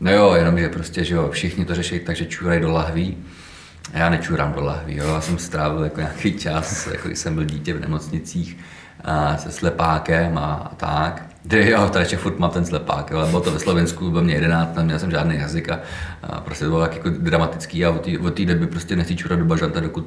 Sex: male